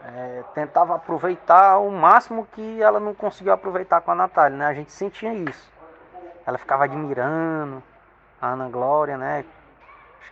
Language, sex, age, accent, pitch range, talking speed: Portuguese, male, 20-39, Brazilian, 125-165 Hz, 150 wpm